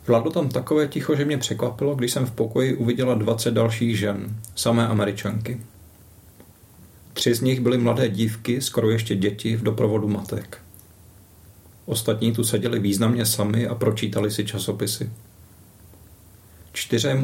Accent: native